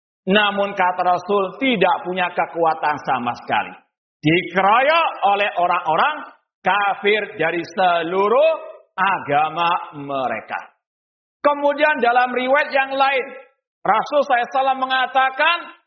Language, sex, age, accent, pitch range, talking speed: Indonesian, male, 50-69, native, 195-275 Hz, 95 wpm